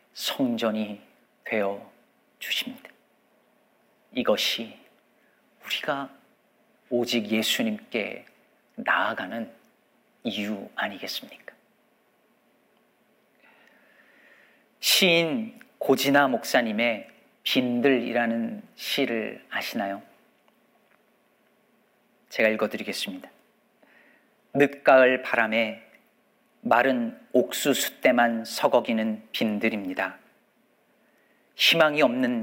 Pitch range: 110-155 Hz